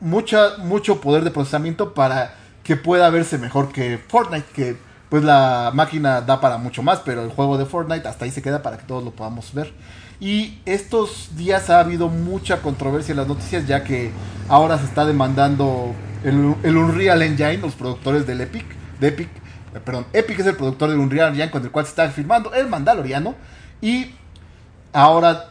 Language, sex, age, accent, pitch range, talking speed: Spanish, male, 30-49, Mexican, 130-175 Hz, 185 wpm